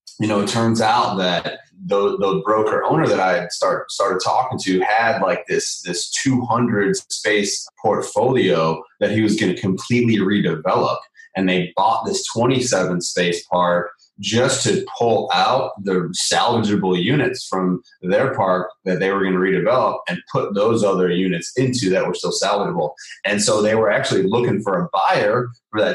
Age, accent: 30-49, American